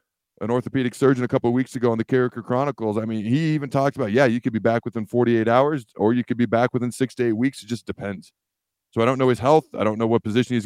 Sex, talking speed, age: male, 285 wpm, 40-59